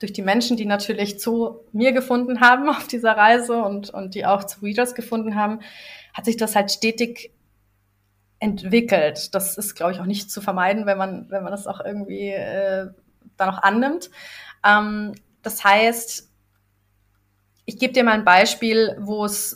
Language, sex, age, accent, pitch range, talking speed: German, female, 30-49, German, 195-240 Hz, 170 wpm